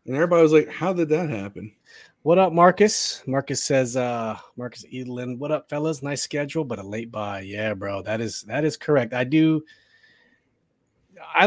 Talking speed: 185 wpm